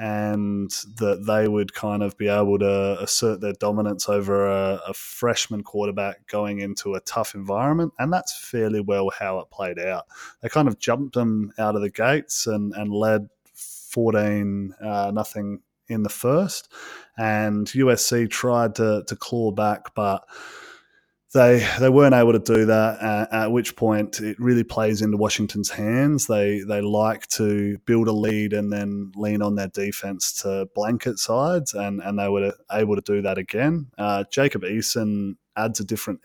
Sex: male